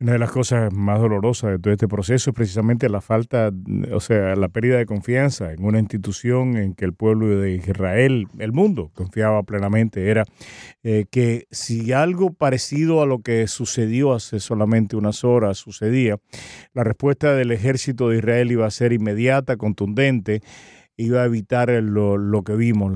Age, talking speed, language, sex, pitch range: 40-59, 170 wpm, Spanish, male, 105-120 Hz